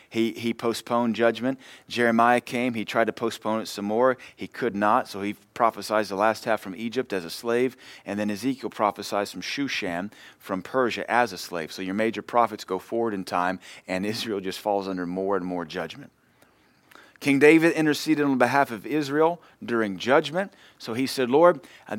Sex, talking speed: male, 190 wpm